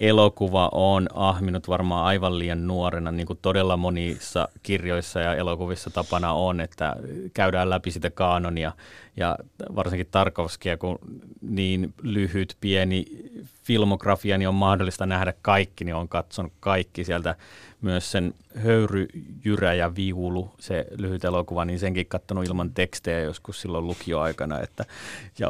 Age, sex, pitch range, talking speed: 30-49, male, 90-110 Hz, 135 wpm